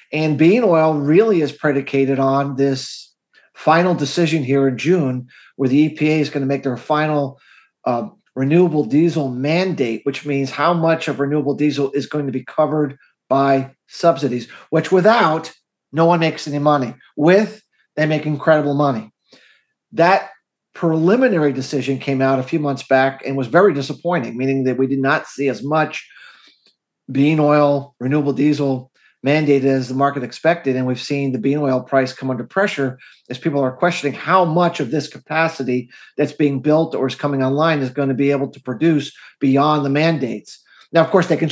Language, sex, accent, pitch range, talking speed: English, male, American, 135-160 Hz, 180 wpm